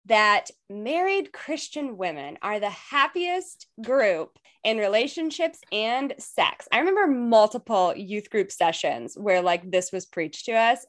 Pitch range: 190-290 Hz